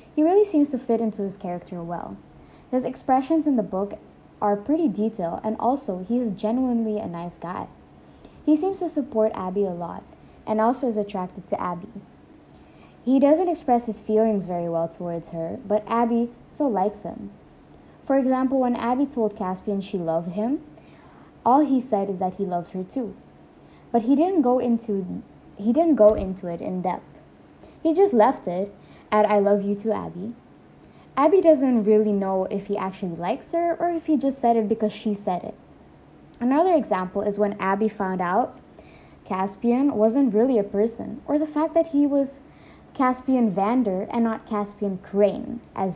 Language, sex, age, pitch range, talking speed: English, female, 20-39, 195-255 Hz, 175 wpm